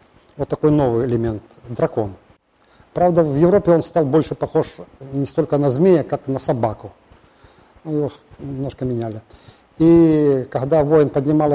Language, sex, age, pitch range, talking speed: Russian, male, 50-69, 120-160 Hz, 140 wpm